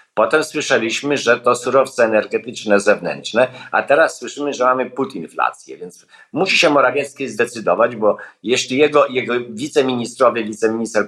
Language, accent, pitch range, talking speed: Polish, native, 105-130 Hz, 130 wpm